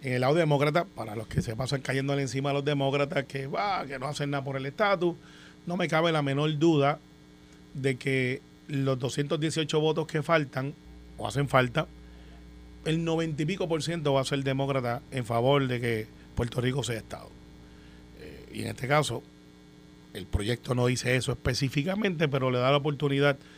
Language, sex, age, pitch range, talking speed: Spanish, male, 30-49, 120-165 Hz, 185 wpm